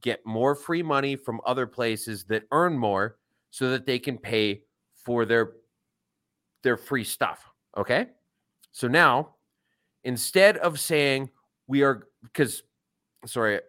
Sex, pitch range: male, 120-165 Hz